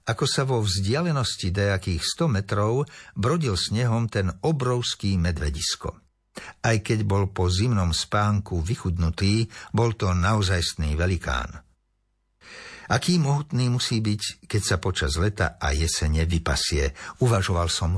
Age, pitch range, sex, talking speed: 60-79, 90-115 Hz, male, 120 wpm